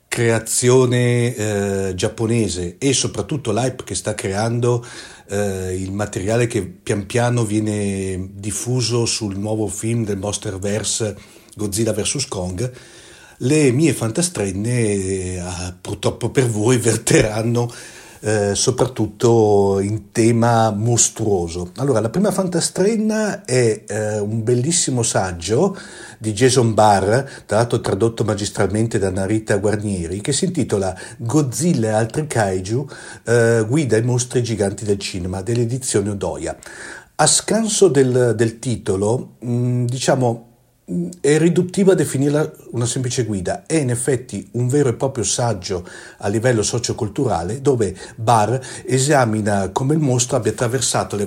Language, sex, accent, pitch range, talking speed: Italian, male, native, 105-130 Hz, 125 wpm